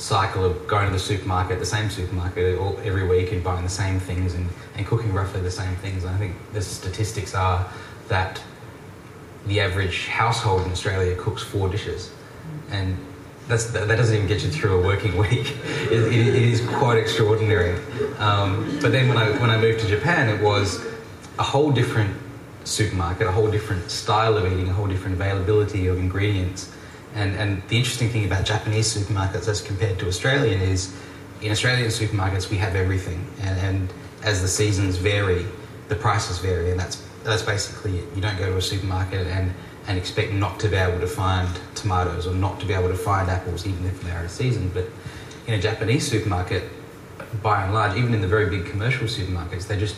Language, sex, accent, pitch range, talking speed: English, male, Australian, 95-110 Hz, 200 wpm